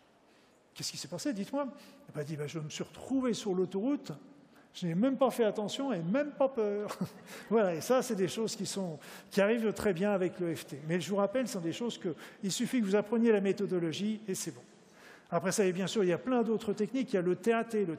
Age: 50-69